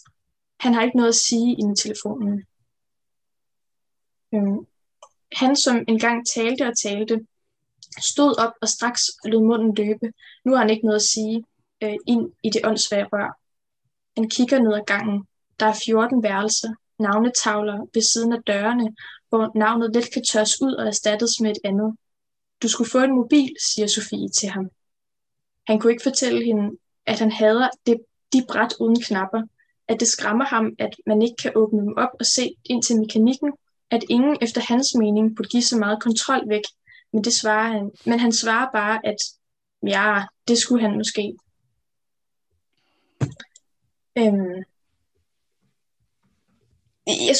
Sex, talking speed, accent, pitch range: female, 155 wpm, native, 215-245 Hz